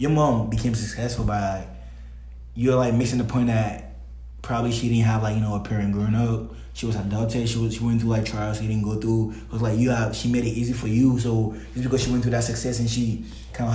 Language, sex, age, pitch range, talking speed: English, male, 20-39, 105-120 Hz, 260 wpm